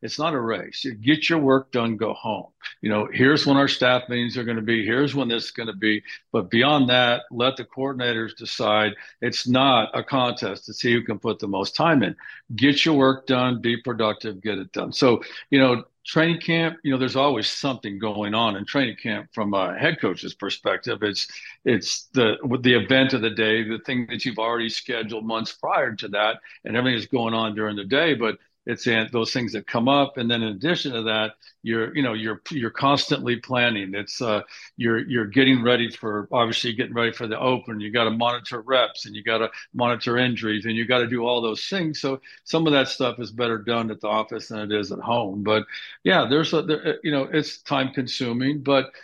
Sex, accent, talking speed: male, American, 225 wpm